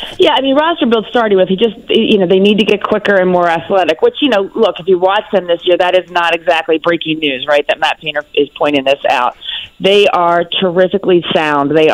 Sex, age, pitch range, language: female, 40-59, 155-185 Hz, English